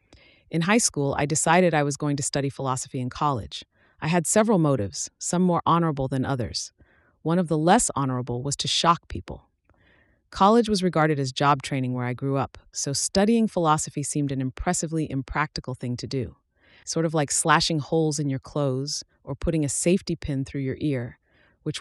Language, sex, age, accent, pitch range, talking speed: English, female, 30-49, American, 130-165 Hz, 185 wpm